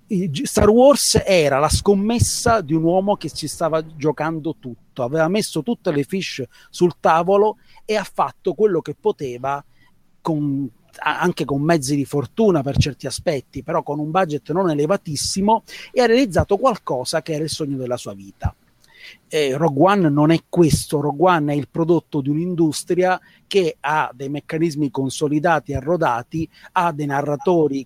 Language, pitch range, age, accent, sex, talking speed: Italian, 145-190 Hz, 30-49, native, male, 160 wpm